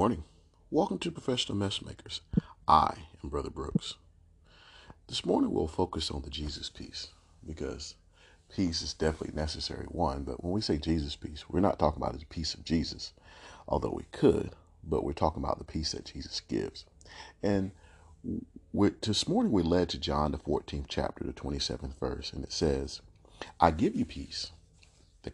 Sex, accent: male, American